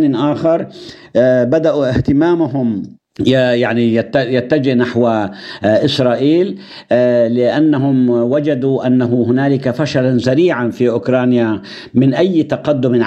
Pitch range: 115-135 Hz